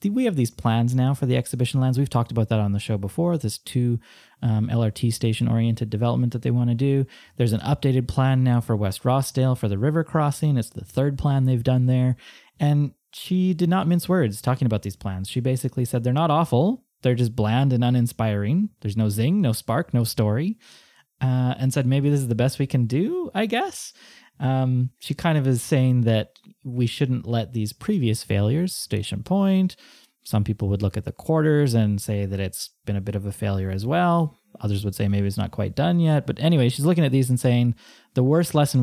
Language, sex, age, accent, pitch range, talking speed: English, male, 20-39, American, 110-140 Hz, 220 wpm